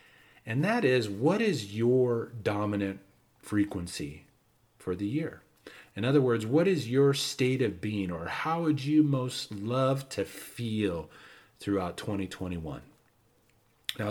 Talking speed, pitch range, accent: 130 wpm, 100-140 Hz, American